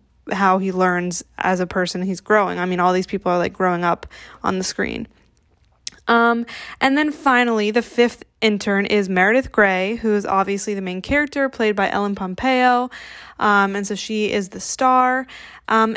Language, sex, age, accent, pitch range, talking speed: English, female, 10-29, American, 195-230 Hz, 180 wpm